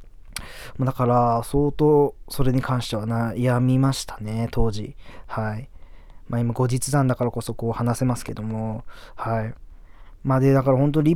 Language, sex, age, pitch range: Japanese, male, 20-39, 115-140 Hz